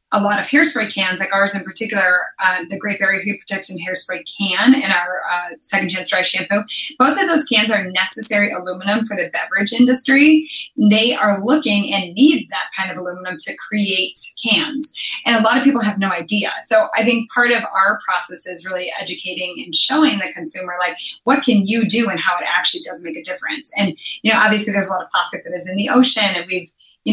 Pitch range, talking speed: 185-225 Hz, 215 wpm